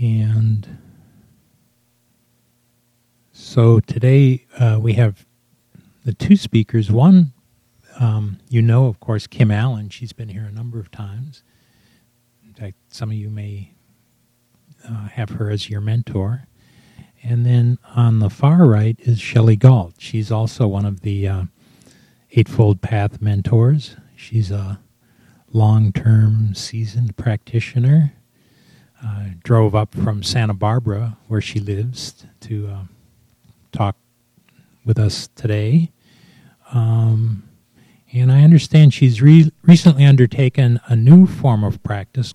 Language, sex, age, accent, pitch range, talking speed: English, male, 40-59, American, 105-120 Hz, 125 wpm